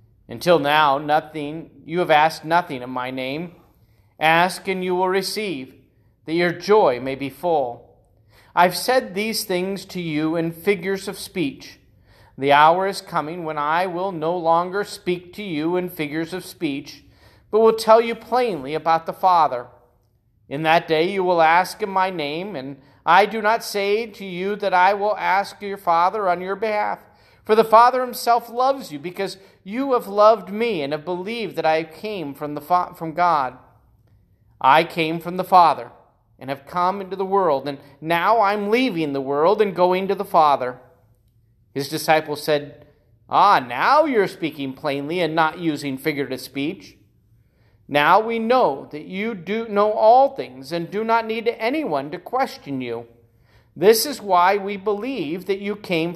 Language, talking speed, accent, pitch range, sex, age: English, 175 wpm, American, 140-200 Hz, male, 40-59